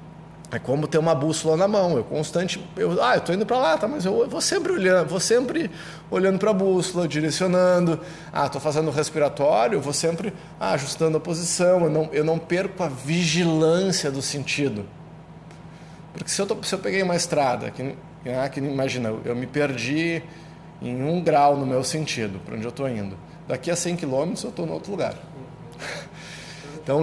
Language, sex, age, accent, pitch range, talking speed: Portuguese, male, 20-39, Brazilian, 140-170 Hz, 195 wpm